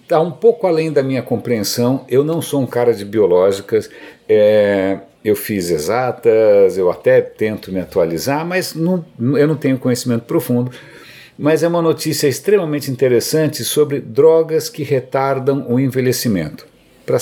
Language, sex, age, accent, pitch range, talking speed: Portuguese, male, 60-79, Brazilian, 115-155 Hz, 140 wpm